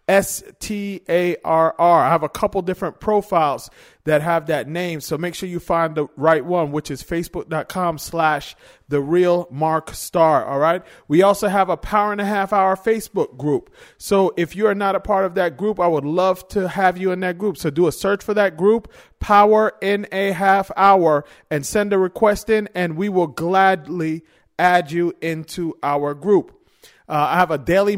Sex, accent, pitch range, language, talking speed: male, American, 170-205 Hz, English, 200 wpm